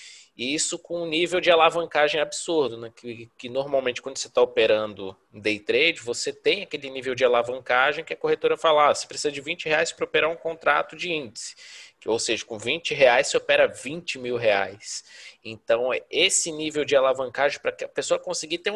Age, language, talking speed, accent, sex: 20-39, Portuguese, 195 wpm, Brazilian, male